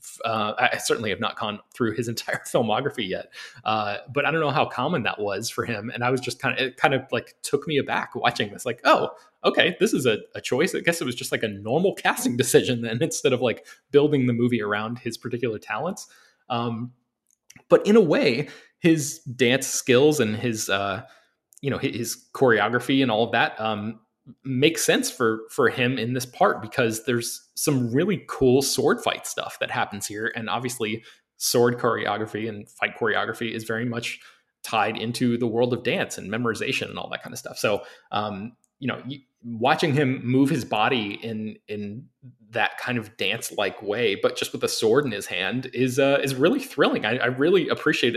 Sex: male